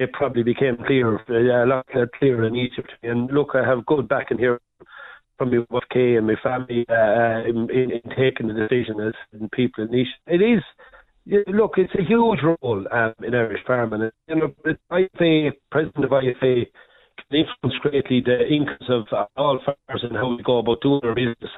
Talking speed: 200 wpm